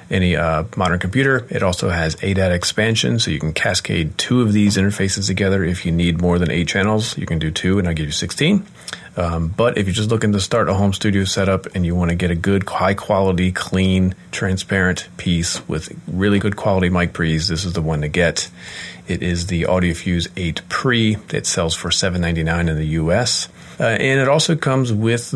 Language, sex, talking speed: English, male, 210 wpm